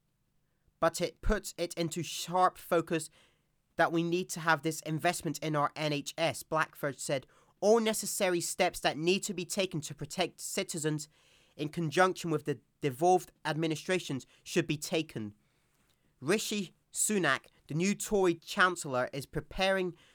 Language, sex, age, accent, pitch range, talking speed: English, male, 30-49, British, 150-180 Hz, 140 wpm